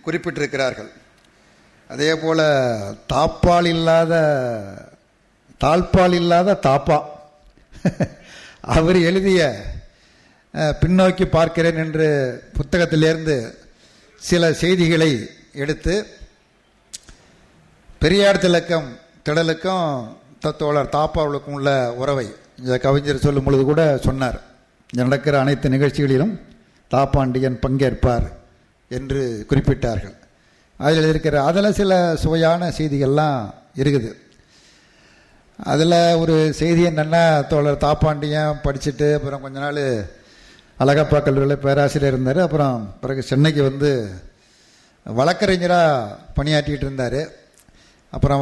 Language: Tamil